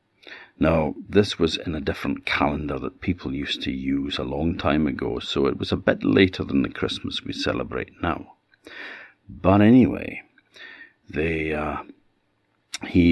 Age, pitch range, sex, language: 60-79, 80-100 Hz, male, English